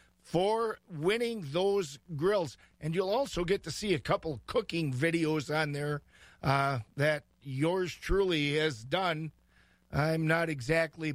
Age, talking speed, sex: 50-69, 135 wpm, male